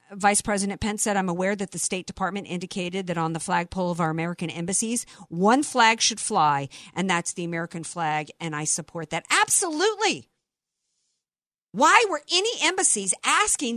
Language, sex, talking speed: English, female, 165 wpm